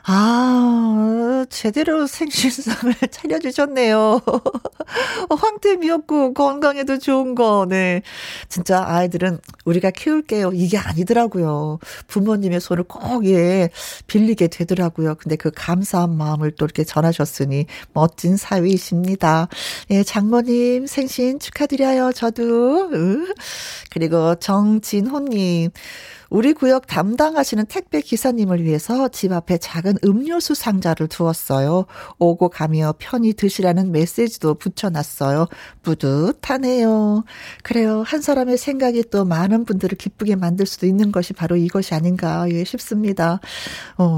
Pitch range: 170-245 Hz